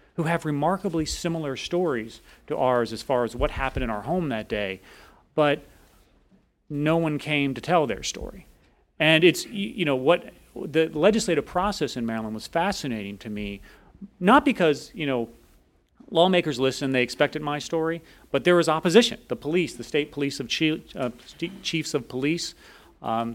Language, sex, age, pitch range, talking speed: English, male, 40-59, 125-175 Hz, 170 wpm